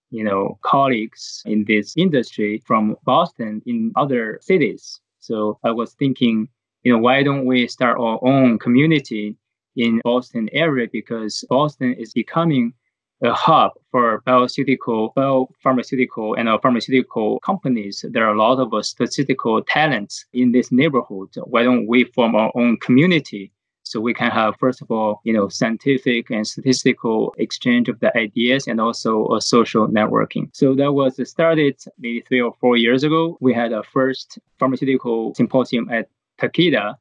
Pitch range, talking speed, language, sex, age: 115-135 Hz, 155 wpm, English, male, 20-39